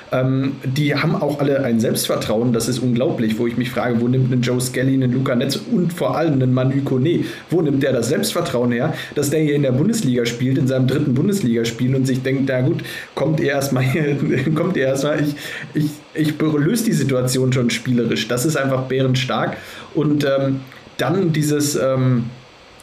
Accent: German